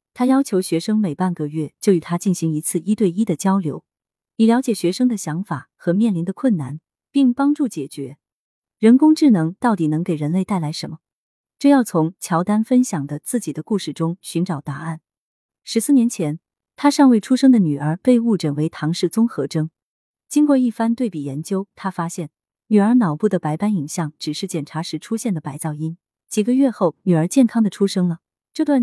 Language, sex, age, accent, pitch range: Chinese, female, 30-49, native, 160-235 Hz